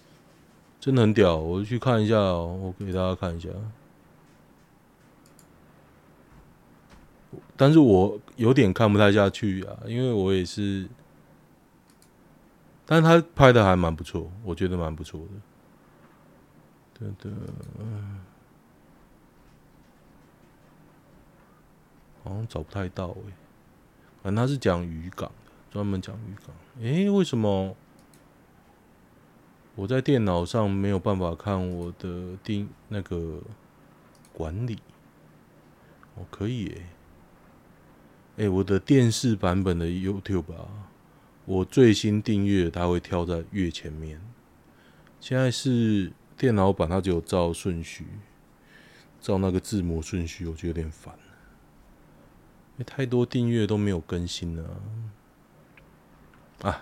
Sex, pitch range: male, 90-110 Hz